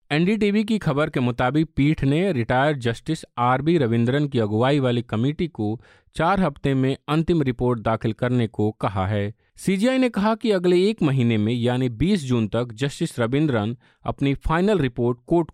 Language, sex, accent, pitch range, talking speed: Hindi, male, native, 115-160 Hz, 170 wpm